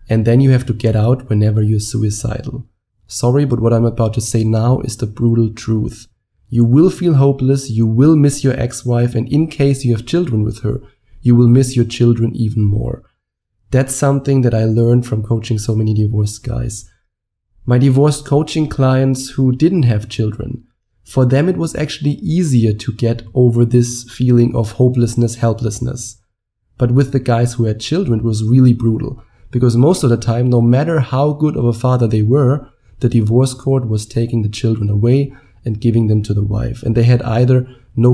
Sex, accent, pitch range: male, German, 115-130 Hz